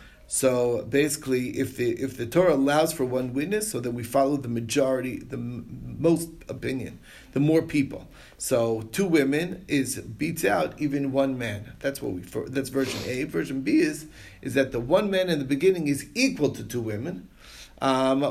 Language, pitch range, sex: English, 125-155 Hz, male